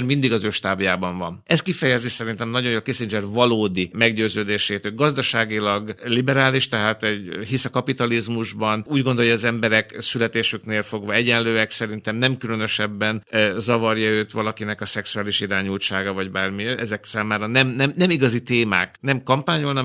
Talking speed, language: 150 wpm, Hungarian